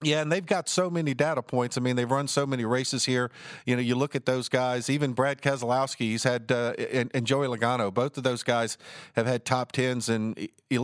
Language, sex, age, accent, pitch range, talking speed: English, male, 50-69, American, 125-145 Hz, 240 wpm